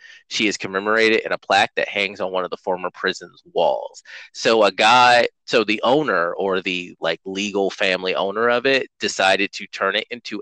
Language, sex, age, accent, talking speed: English, male, 30-49, American, 195 wpm